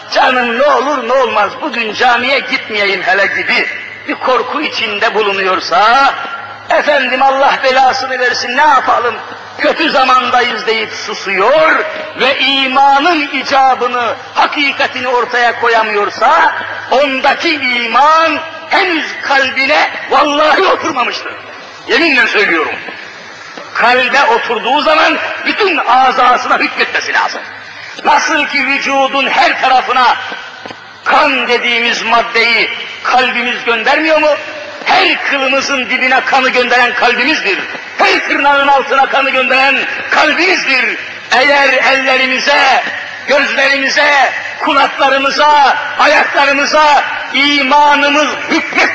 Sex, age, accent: male, 50-69, native